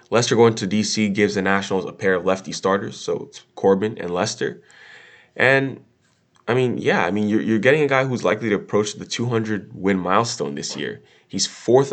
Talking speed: 200 wpm